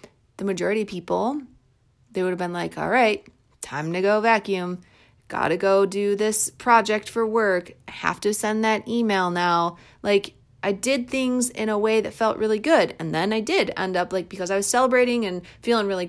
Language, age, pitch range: English, 30-49, 185-230 Hz